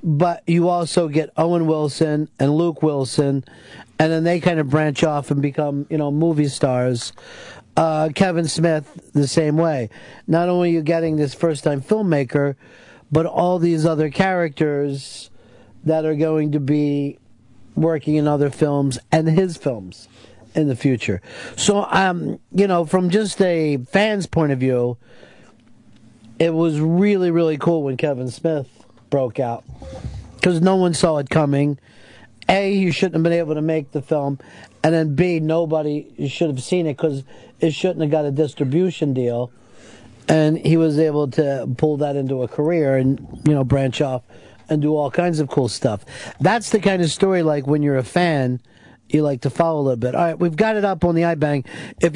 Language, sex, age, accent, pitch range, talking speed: English, male, 50-69, American, 135-170 Hz, 180 wpm